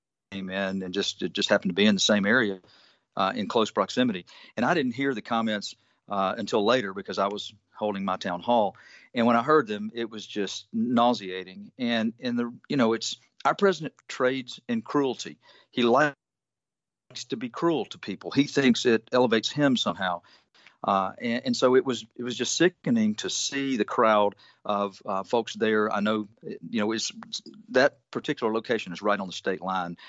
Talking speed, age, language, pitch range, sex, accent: 190 wpm, 50-69, English, 100-135 Hz, male, American